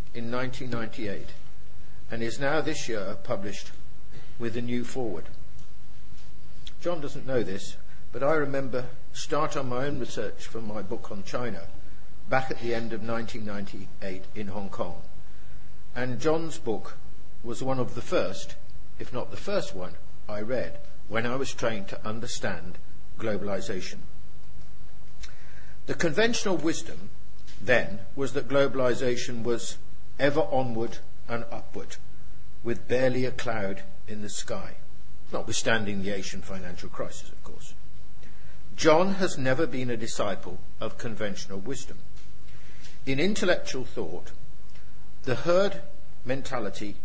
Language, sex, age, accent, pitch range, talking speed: English, male, 50-69, British, 110-135 Hz, 130 wpm